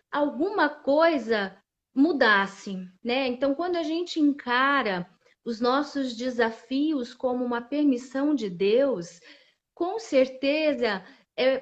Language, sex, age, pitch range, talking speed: Portuguese, female, 30-49, 225-280 Hz, 105 wpm